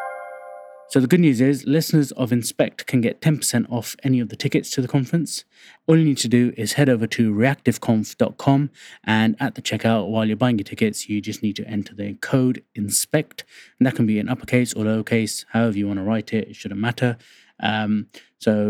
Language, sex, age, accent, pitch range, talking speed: English, male, 20-39, British, 105-125 Hz, 210 wpm